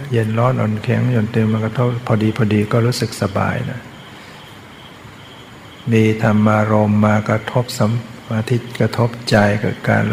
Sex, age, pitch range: male, 60-79, 105-125 Hz